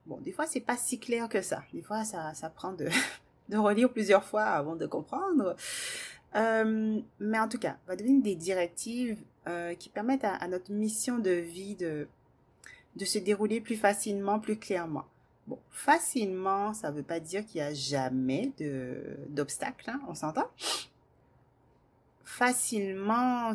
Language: French